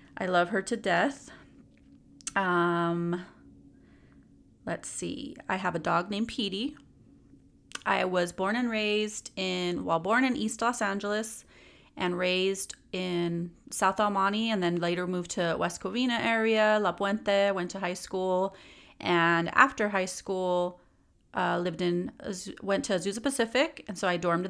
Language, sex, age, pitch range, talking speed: English, female, 30-49, 180-220 Hz, 145 wpm